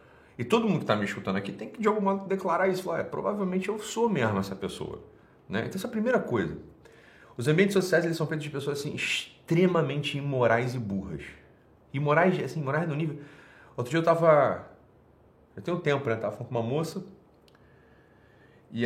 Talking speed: 195 wpm